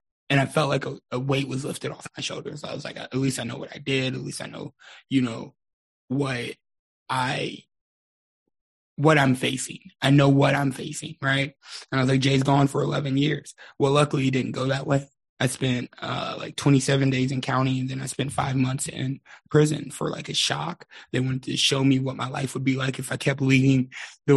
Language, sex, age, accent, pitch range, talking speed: English, male, 20-39, American, 130-145 Hz, 225 wpm